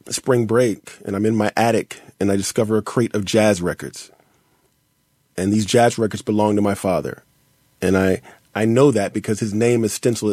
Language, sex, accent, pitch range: English, male, American, 105-125 Hz